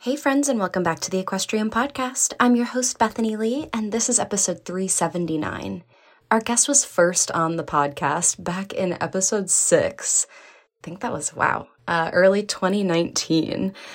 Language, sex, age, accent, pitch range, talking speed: English, female, 20-39, American, 170-210 Hz, 165 wpm